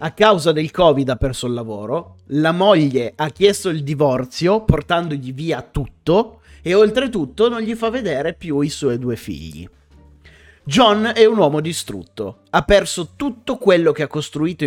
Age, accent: 30-49, native